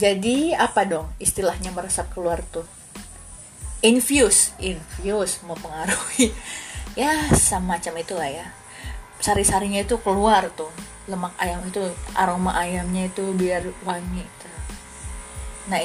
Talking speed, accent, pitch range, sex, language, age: 115 wpm, native, 175-220 Hz, female, Indonesian, 20-39